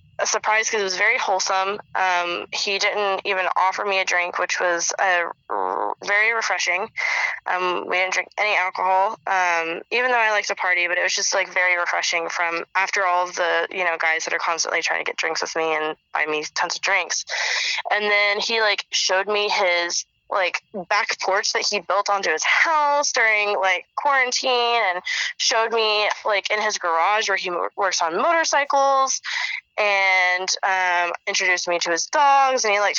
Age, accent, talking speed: 20-39, American, 190 wpm